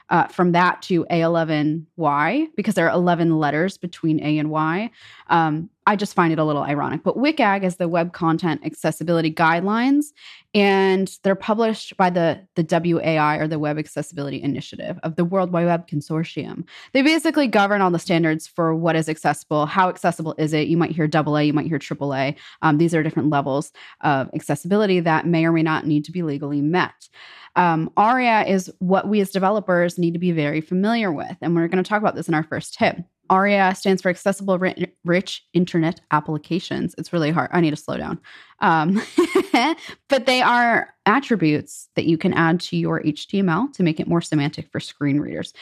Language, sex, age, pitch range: English, female, 20-39, 155-195 Hz